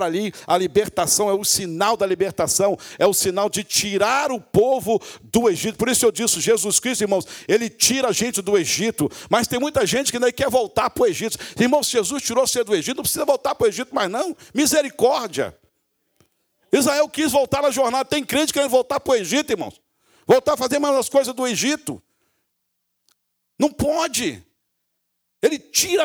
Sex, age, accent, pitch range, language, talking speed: male, 60-79, Brazilian, 205-275 Hz, English, 190 wpm